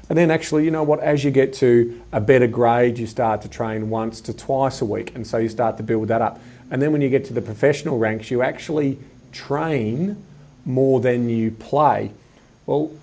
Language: English